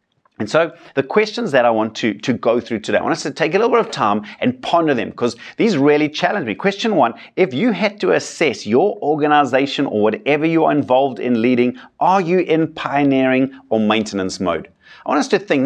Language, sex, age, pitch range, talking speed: English, male, 30-49, 120-175 Hz, 220 wpm